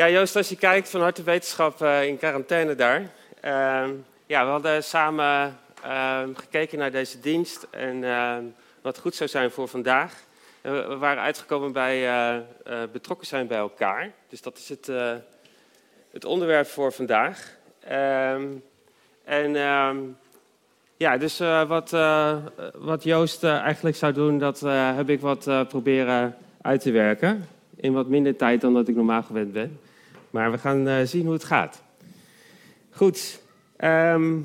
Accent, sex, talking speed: Dutch, male, 160 wpm